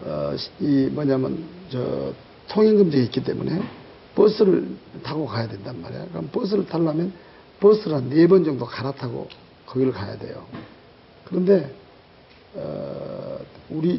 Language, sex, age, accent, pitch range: Korean, male, 60-79, native, 135-185 Hz